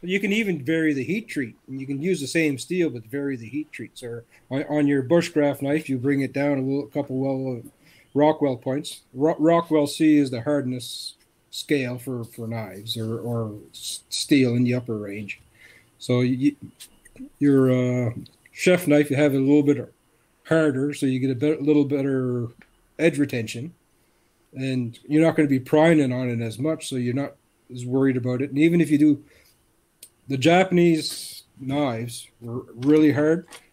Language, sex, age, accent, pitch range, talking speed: English, male, 40-59, American, 120-150 Hz, 190 wpm